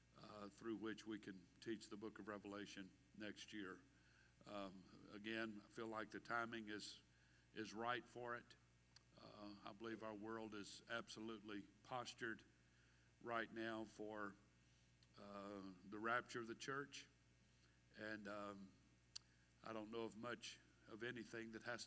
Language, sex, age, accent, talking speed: English, male, 60-79, American, 145 wpm